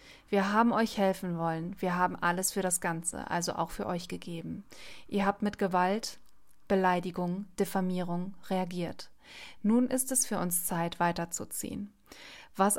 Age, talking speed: 30-49, 145 wpm